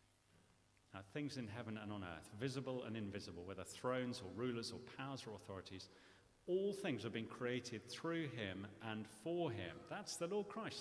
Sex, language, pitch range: male, English, 100-145 Hz